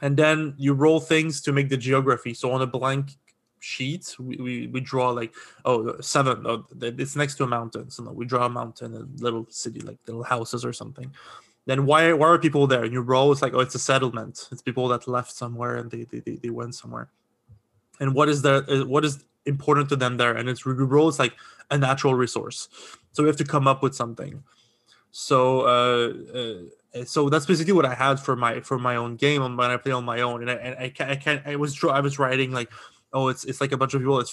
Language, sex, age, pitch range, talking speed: English, male, 20-39, 125-145 Hz, 240 wpm